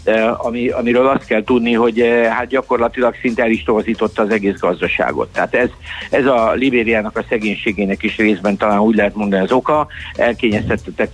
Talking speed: 165 wpm